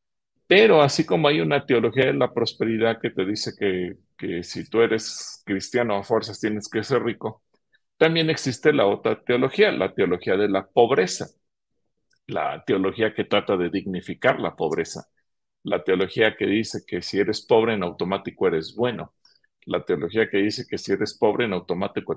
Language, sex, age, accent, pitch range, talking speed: Spanish, male, 40-59, Mexican, 100-125 Hz, 175 wpm